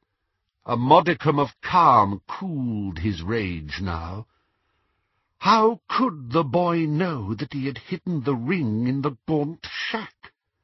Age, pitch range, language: 60-79, 115-185 Hz, English